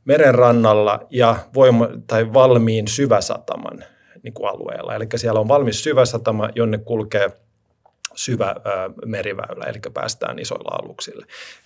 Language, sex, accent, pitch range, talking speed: Finnish, male, native, 105-130 Hz, 115 wpm